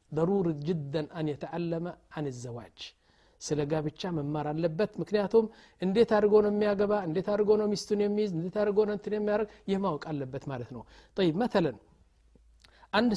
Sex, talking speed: male, 125 wpm